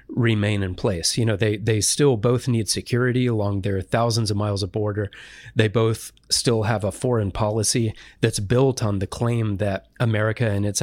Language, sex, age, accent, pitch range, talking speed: English, male, 30-49, American, 105-125 Hz, 190 wpm